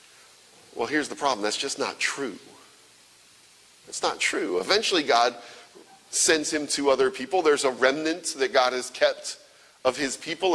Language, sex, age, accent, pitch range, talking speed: English, male, 40-59, American, 140-200 Hz, 160 wpm